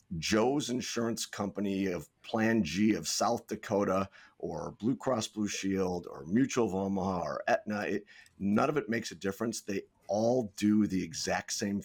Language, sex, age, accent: English, male, 50-69, American